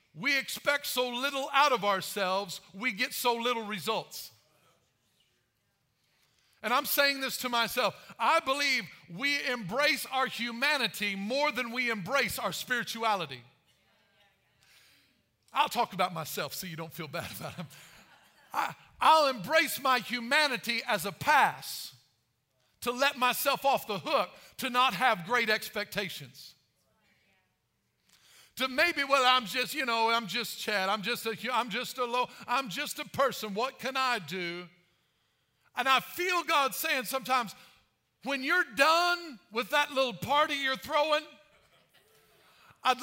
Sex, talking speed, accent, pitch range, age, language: male, 140 wpm, American, 215-285 Hz, 50-69, English